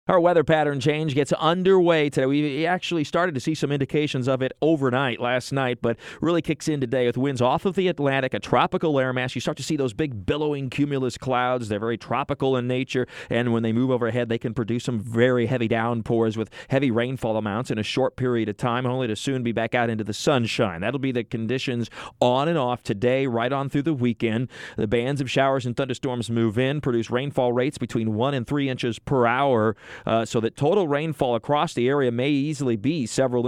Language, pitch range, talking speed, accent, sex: English, 120-145 Hz, 220 wpm, American, male